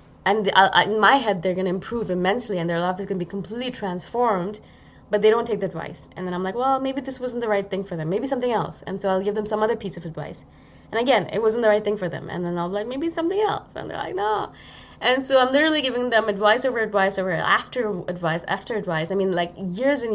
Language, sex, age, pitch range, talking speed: English, female, 20-39, 180-245 Hz, 270 wpm